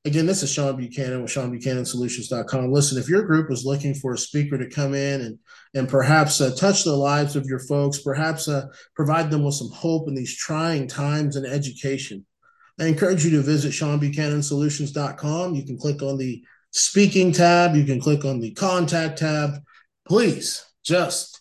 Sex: male